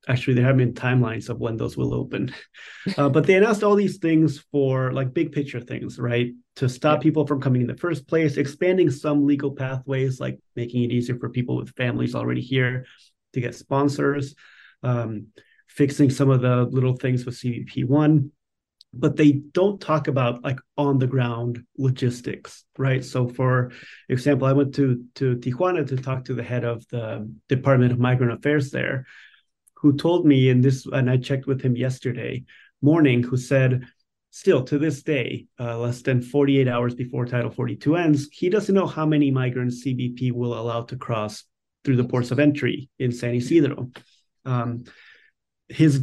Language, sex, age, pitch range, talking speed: English, male, 30-49, 125-145 Hz, 180 wpm